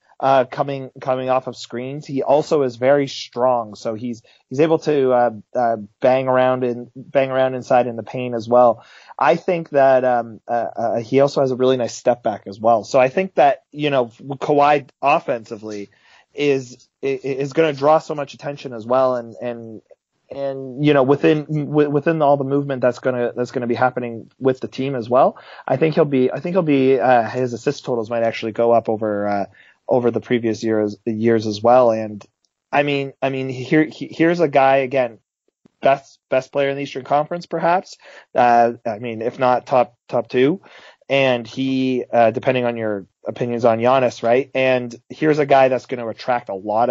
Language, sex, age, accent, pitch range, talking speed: English, male, 30-49, American, 120-140 Hz, 205 wpm